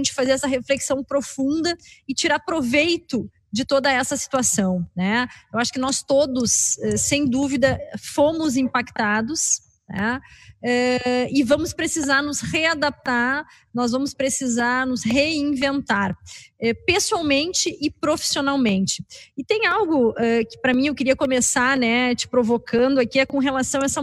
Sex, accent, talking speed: female, Brazilian, 130 wpm